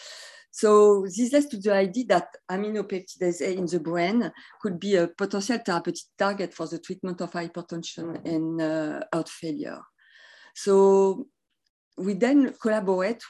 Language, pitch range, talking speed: English, 165-210 Hz, 140 wpm